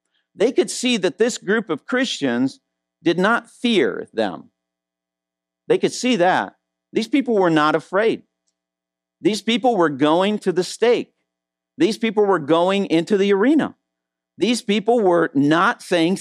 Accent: American